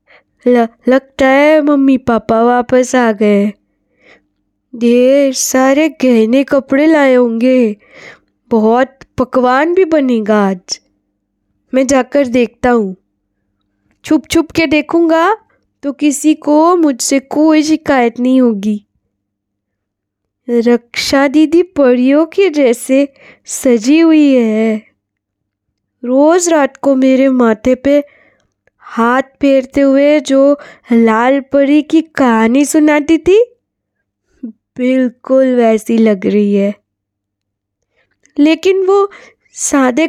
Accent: native